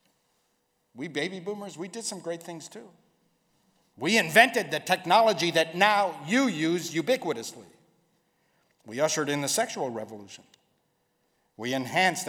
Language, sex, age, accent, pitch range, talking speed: English, male, 60-79, American, 145-200 Hz, 125 wpm